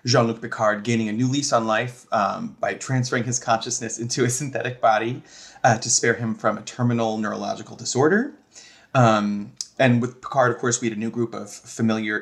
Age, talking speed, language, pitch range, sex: 30-49, 190 wpm, English, 110-125 Hz, male